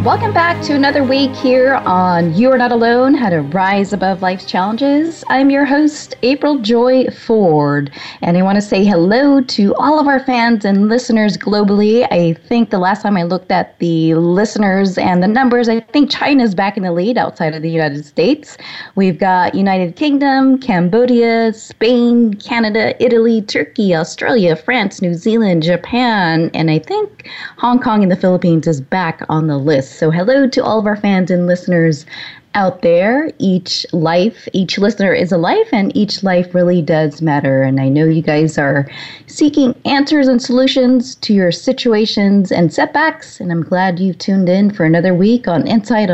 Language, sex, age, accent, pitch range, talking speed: English, female, 20-39, American, 175-250 Hz, 180 wpm